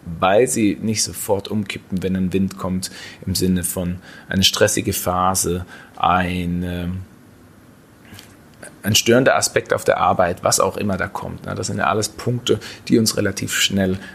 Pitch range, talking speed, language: 95-110 Hz, 150 wpm, German